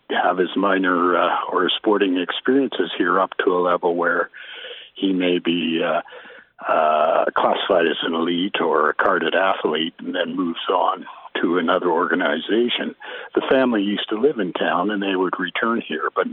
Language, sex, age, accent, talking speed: English, male, 60-79, American, 170 wpm